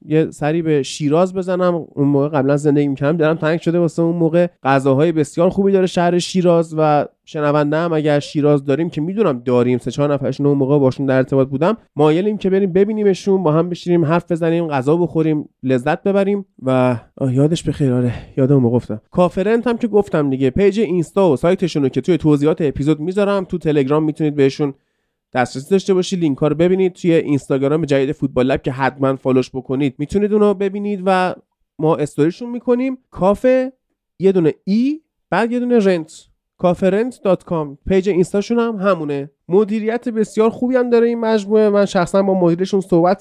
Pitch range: 150-205 Hz